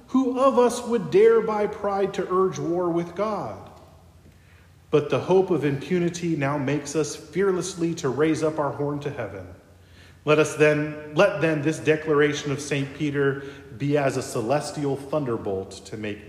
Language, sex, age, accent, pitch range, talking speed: English, male, 40-59, American, 110-170 Hz, 165 wpm